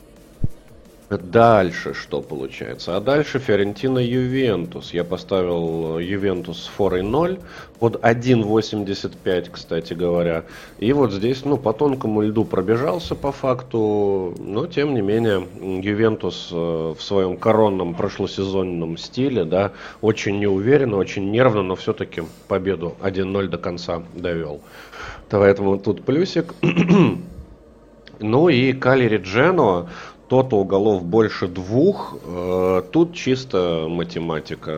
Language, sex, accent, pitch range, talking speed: Russian, male, native, 90-115 Hz, 105 wpm